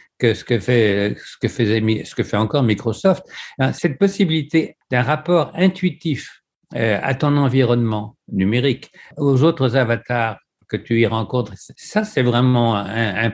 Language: French